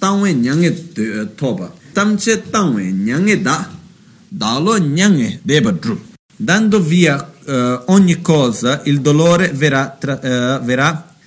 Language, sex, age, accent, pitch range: Italian, male, 40-59, native, 125-175 Hz